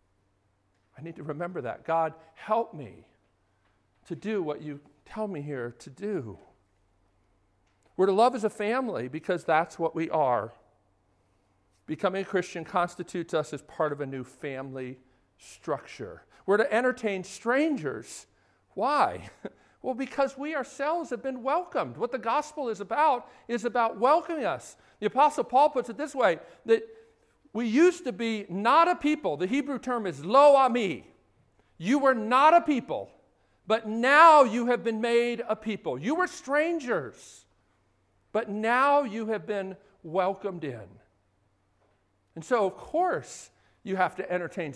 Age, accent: 50-69, American